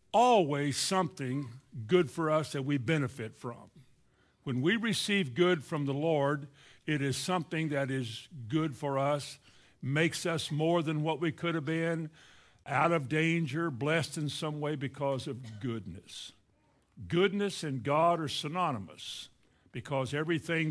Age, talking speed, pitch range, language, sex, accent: 60-79, 145 wpm, 130-170 Hz, English, male, American